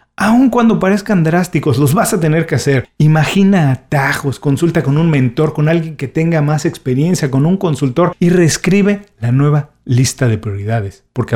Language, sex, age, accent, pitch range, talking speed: Spanish, male, 40-59, Mexican, 125-175 Hz, 175 wpm